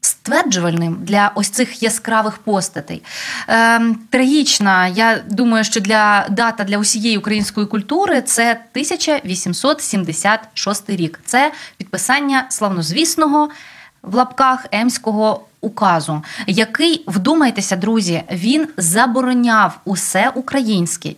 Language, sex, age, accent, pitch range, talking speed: Ukrainian, female, 20-39, native, 210-275 Hz, 100 wpm